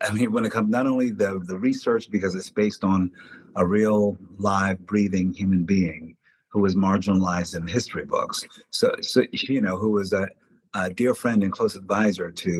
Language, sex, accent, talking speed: English, male, American, 190 wpm